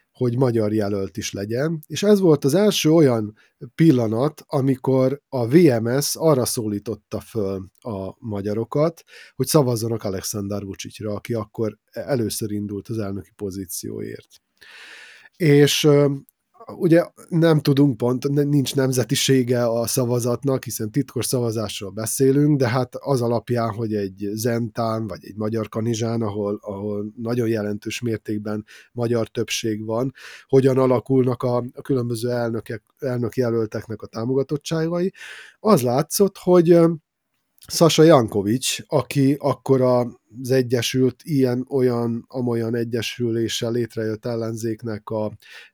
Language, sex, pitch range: Hungarian, male, 110-140 Hz